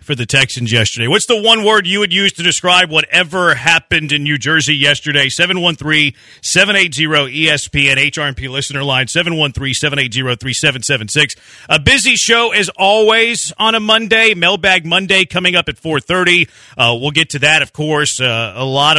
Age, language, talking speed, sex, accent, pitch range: 40-59, English, 150 wpm, male, American, 135-185 Hz